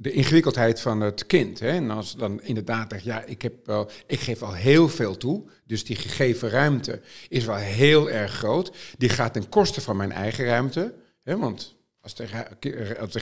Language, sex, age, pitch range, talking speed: Dutch, male, 50-69, 110-135 Hz, 200 wpm